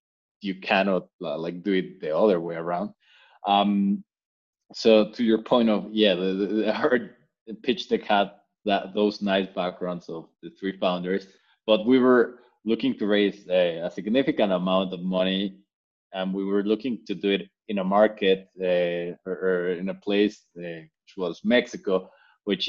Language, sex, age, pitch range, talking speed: English, male, 20-39, 90-105 Hz, 170 wpm